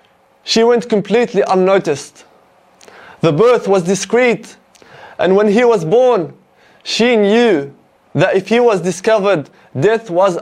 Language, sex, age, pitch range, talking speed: English, male, 20-39, 195-235 Hz, 125 wpm